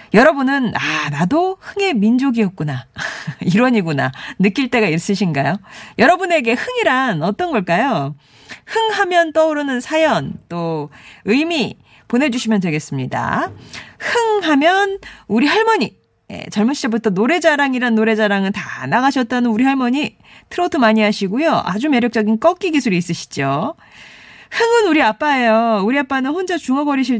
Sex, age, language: female, 40-59, Korean